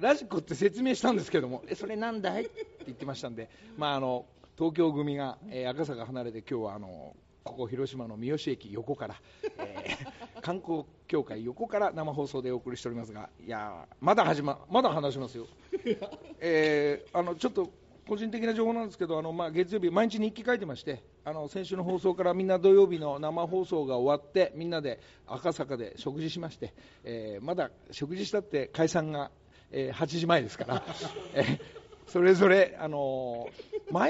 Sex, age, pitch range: male, 50-69, 140-210 Hz